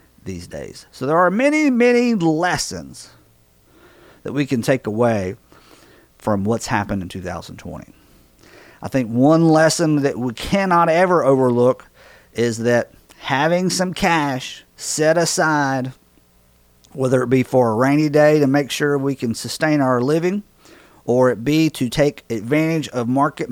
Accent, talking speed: American, 145 wpm